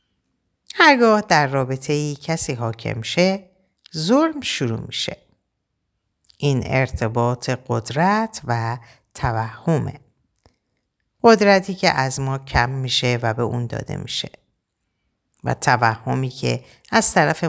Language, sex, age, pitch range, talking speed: Persian, female, 50-69, 120-165 Hz, 105 wpm